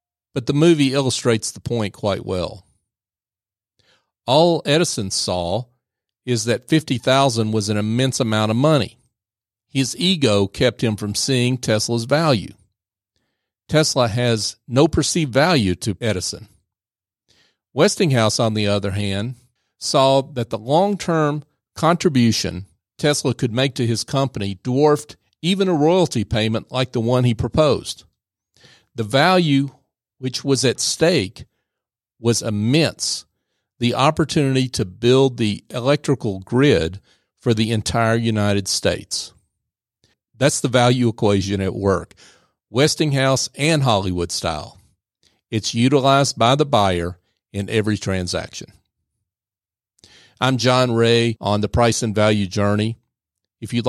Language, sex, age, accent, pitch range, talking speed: English, male, 50-69, American, 105-135 Hz, 120 wpm